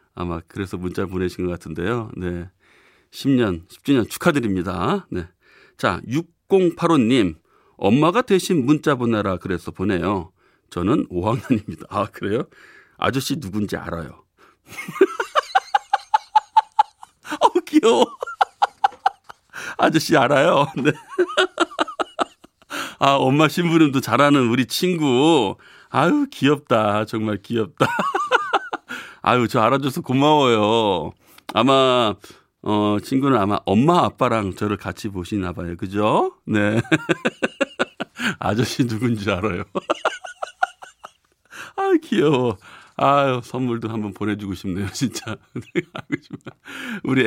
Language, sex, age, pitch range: Korean, male, 40-59, 100-170 Hz